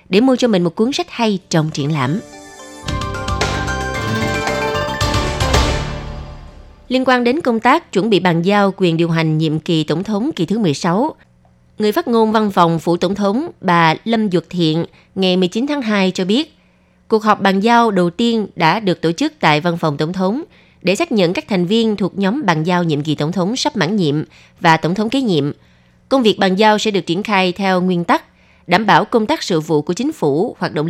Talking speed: 210 wpm